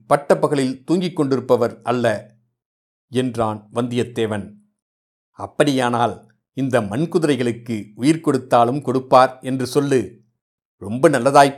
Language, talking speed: Tamil, 85 wpm